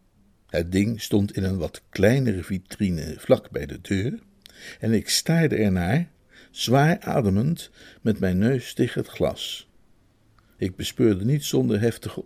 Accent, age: Dutch, 60-79